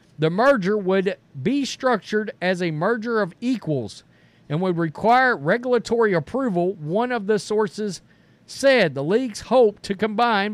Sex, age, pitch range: male, 50-69, 170-225 Hz